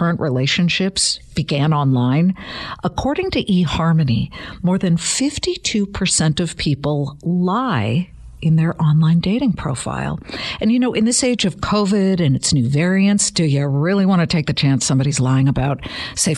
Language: English